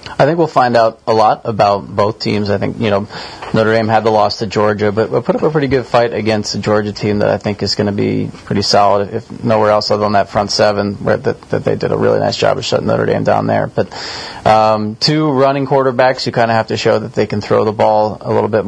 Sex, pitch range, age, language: male, 105-115 Hz, 30-49, English